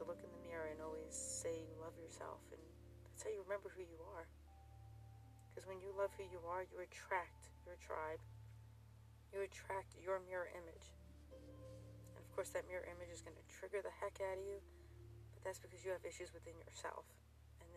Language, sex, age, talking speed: English, female, 40-59, 195 wpm